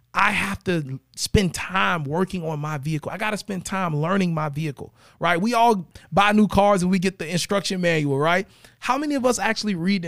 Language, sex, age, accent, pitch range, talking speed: English, male, 30-49, American, 155-215 Hz, 220 wpm